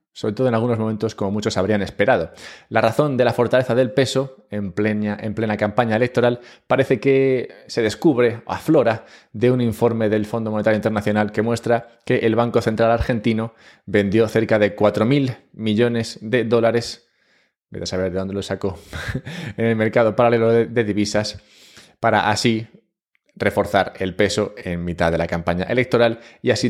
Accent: Spanish